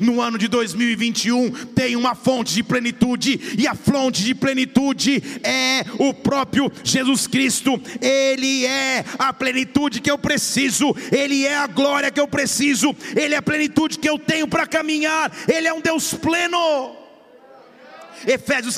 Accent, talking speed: Brazilian, 155 wpm